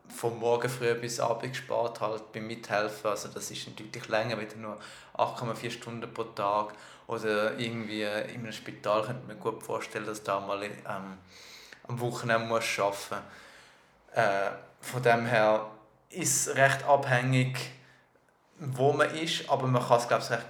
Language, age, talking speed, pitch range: German, 20-39, 155 wpm, 105-125 Hz